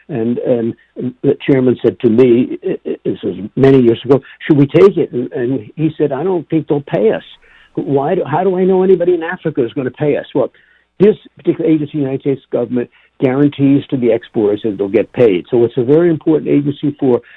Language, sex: English, male